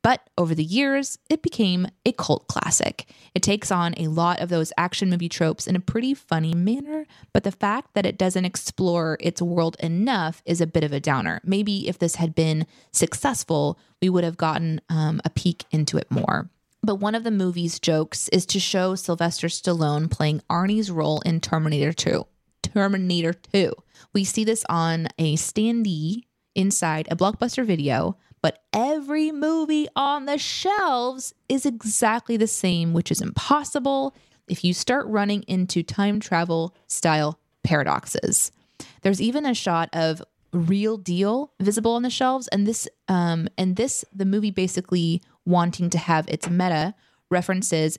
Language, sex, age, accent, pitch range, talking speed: English, female, 20-39, American, 165-215 Hz, 165 wpm